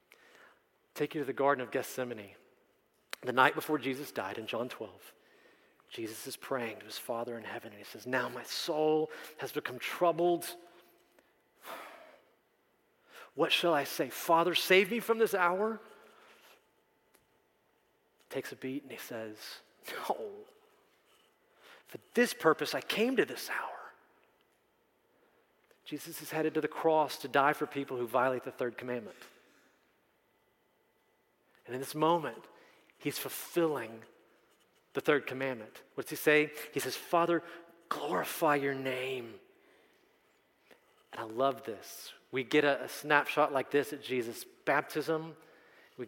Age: 40-59